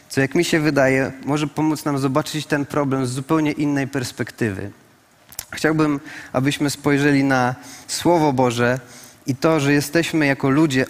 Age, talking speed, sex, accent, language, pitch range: 30-49, 150 wpm, male, native, Polish, 135-155 Hz